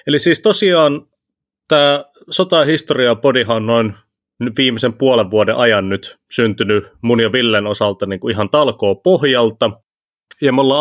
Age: 30-49